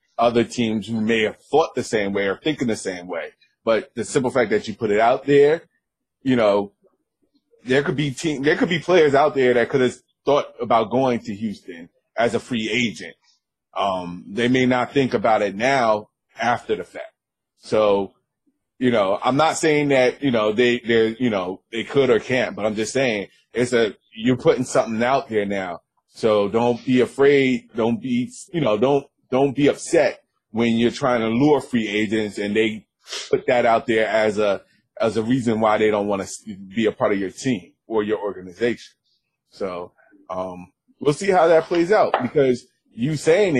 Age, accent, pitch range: 30-49, American, 110-145 Hz